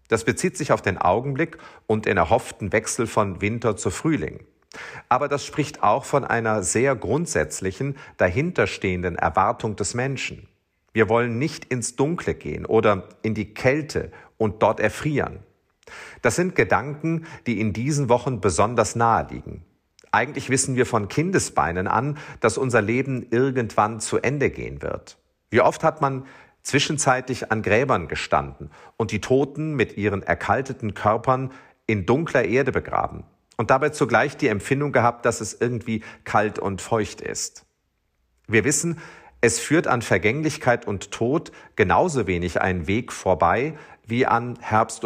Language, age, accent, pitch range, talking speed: German, 50-69, German, 105-140 Hz, 150 wpm